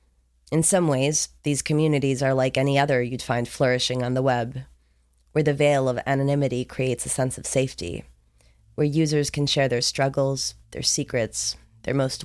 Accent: American